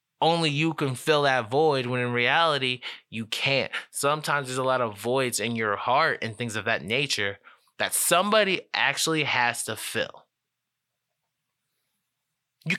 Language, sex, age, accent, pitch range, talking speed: English, male, 20-39, American, 115-155 Hz, 150 wpm